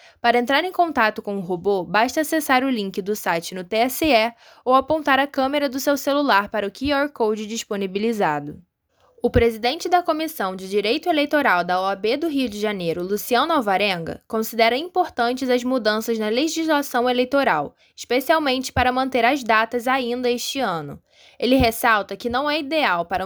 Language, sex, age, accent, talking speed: Portuguese, female, 10-29, Brazilian, 165 wpm